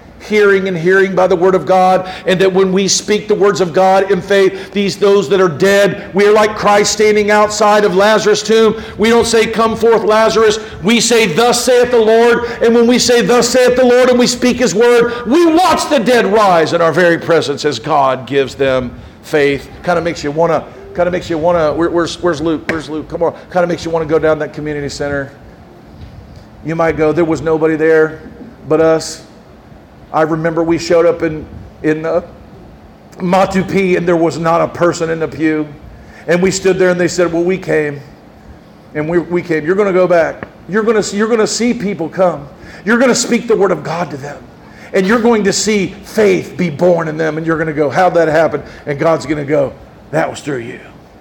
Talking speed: 220 wpm